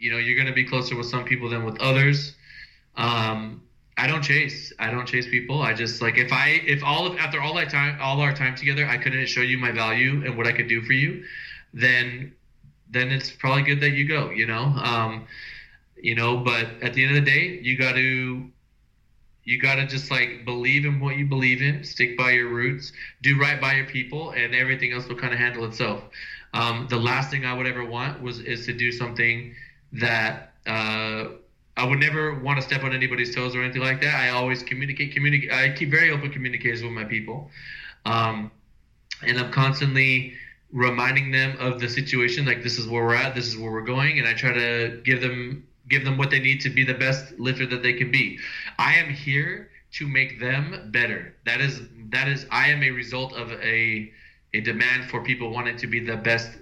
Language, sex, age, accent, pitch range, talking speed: English, male, 20-39, American, 120-135 Hz, 220 wpm